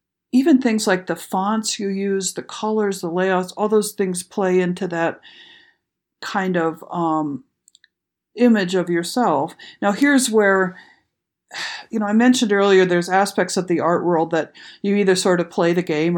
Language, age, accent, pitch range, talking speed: English, 50-69, American, 175-215 Hz, 165 wpm